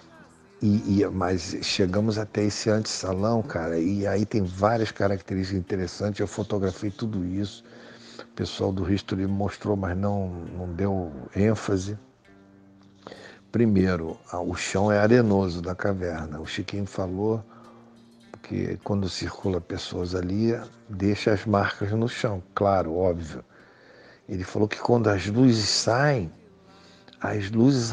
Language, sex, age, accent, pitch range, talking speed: Portuguese, male, 60-79, Brazilian, 95-115 Hz, 130 wpm